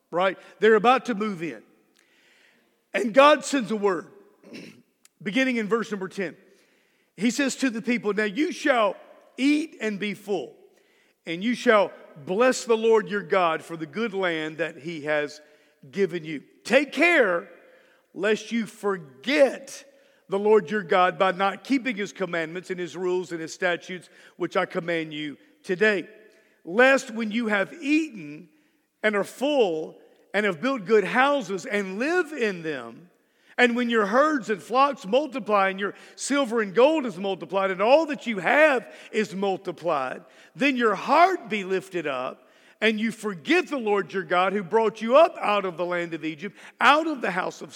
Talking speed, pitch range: 170 wpm, 185-255 Hz